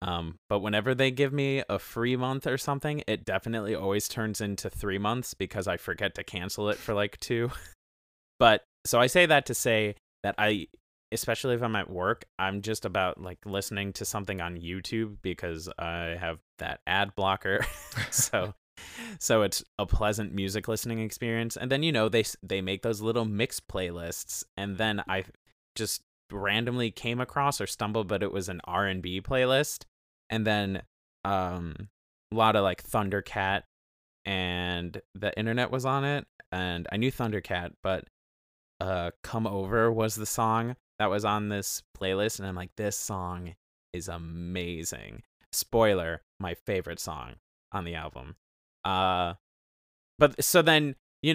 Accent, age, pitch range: American, 20-39, 90-115 Hz